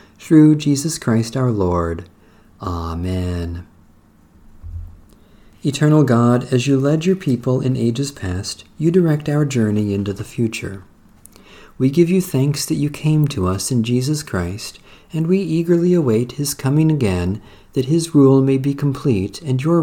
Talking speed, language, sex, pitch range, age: 150 wpm, English, male, 95-145 Hz, 50-69